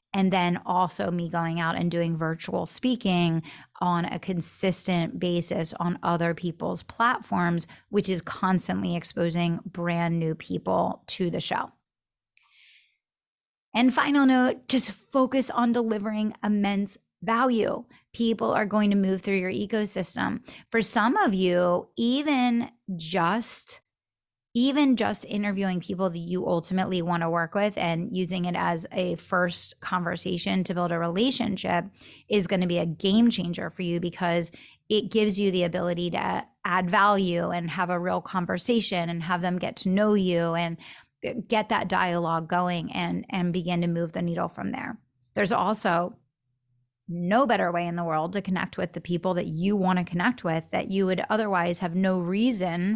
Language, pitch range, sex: English, 170-210 Hz, female